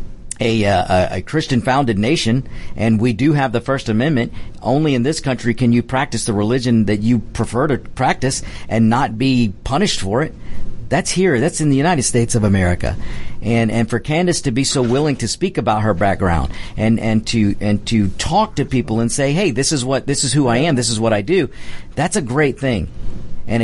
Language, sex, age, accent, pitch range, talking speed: English, male, 50-69, American, 110-145 Hz, 215 wpm